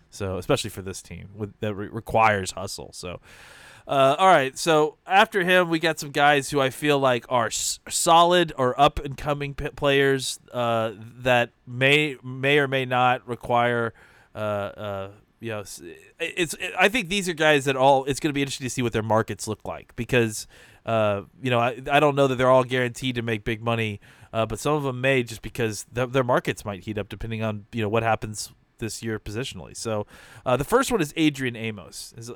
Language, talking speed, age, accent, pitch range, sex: English, 215 wpm, 20-39, American, 110-140 Hz, male